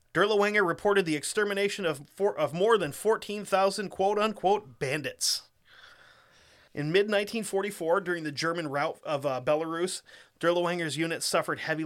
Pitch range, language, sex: 140-185 Hz, English, male